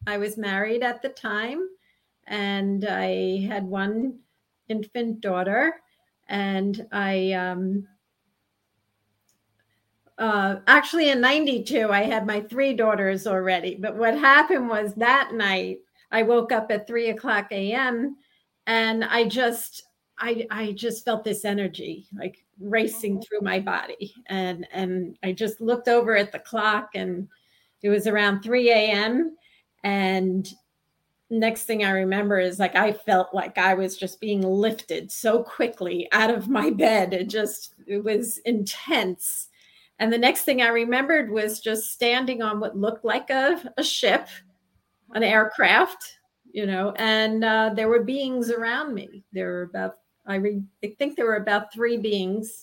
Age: 50-69